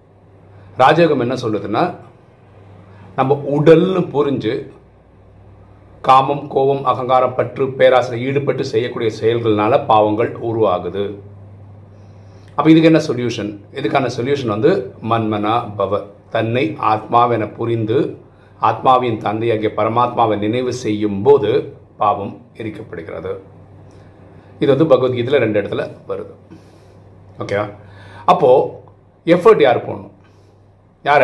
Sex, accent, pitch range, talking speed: male, native, 100-145 Hz, 90 wpm